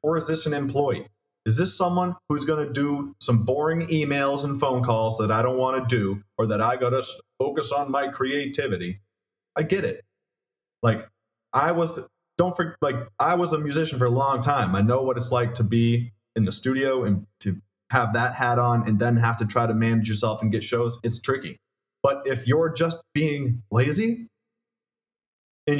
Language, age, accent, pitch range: English, 30-49, American, 115-145 Hz